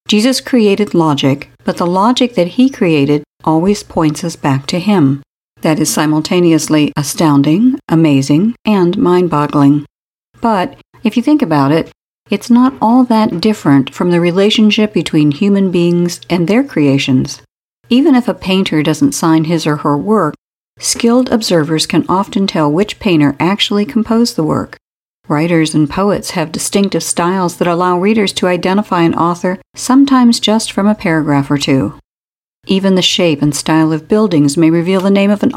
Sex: female